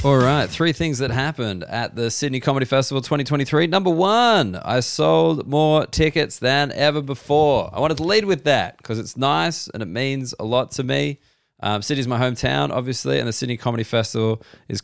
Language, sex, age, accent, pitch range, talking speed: English, male, 20-39, Australian, 105-135 Hz, 195 wpm